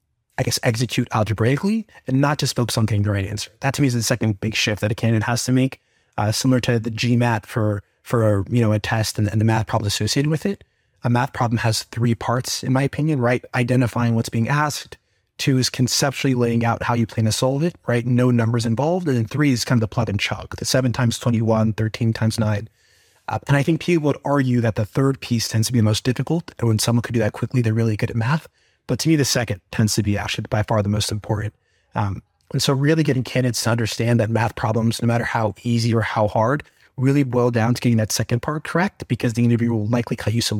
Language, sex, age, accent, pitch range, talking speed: English, male, 30-49, American, 110-130 Hz, 255 wpm